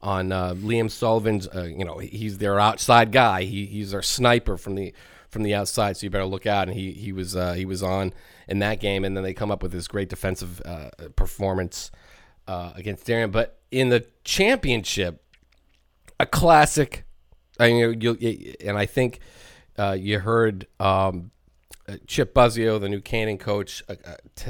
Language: English